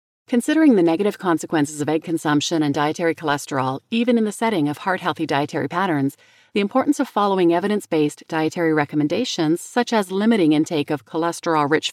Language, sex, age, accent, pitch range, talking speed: English, female, 40-59, American, 155-210 Hz, 155 wpm